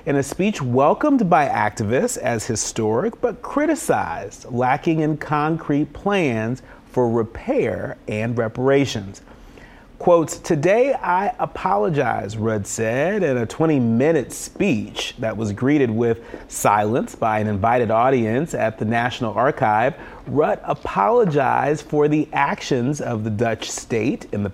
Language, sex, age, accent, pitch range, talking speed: English, male, 40-59, American, 115-155 Hz, 125 wpm